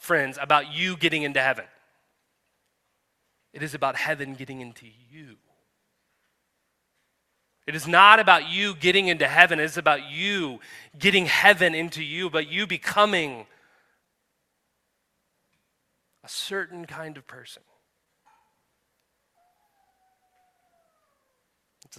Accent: American